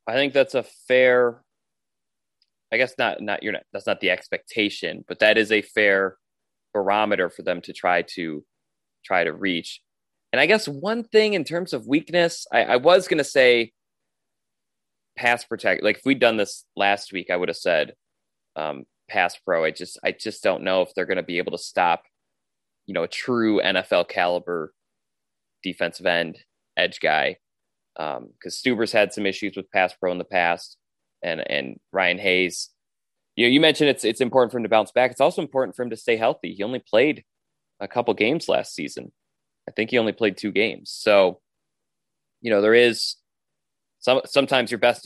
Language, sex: English, male